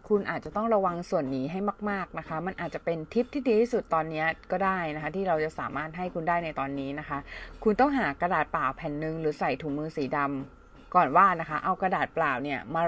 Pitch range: 150-205 Hz